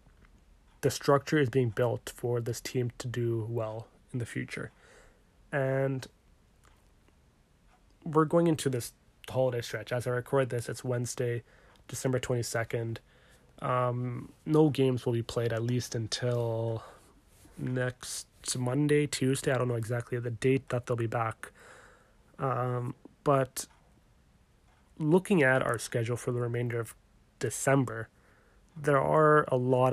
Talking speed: 130 wpm